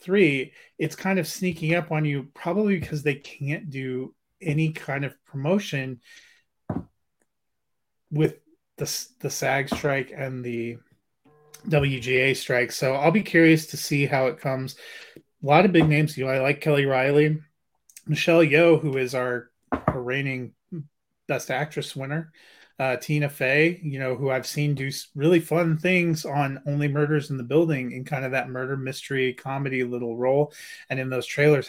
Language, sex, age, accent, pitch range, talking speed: English, male, 30-49, American, 130-155 Hz, 165 wpm